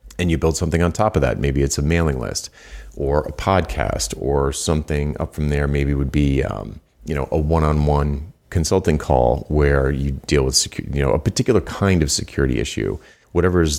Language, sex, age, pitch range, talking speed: English, male, 40-59, 75-95 Hz, 200 wpm